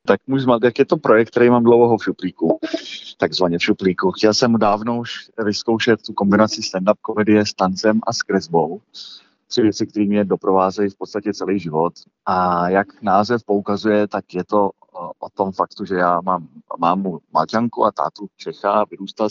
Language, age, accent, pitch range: Czech, 30-49, native, 95-110 Hz